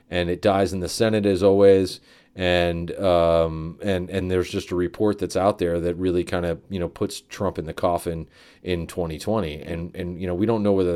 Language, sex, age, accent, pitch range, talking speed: English, male, 30-49, American, 85-105 Hz, 220 wpm